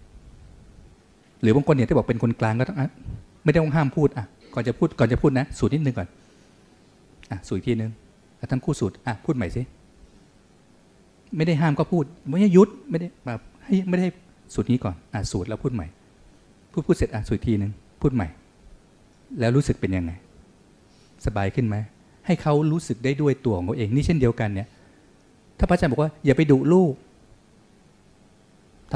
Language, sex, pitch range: Thai, male, 105-150 Hz